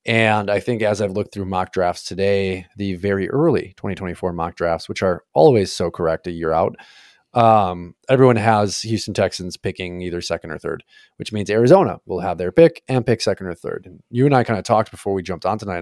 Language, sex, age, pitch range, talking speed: English, male, 30-49, 95-120 Hz, 220 wpm